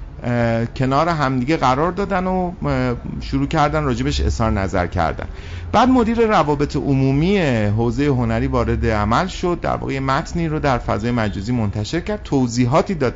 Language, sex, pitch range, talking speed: Persian, male, 105-140 Hz, 145 wpm